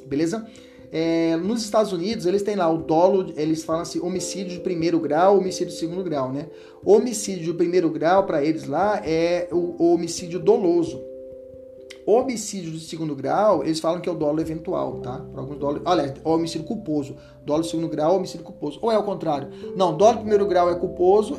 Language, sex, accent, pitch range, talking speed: Portuguese, male, Brazilian, 155-200 Hz, 190 wpm